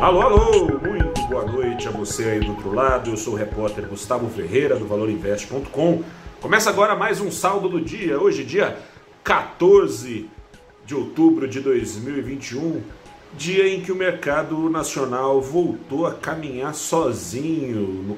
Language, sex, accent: Portuguese, male, Brazilian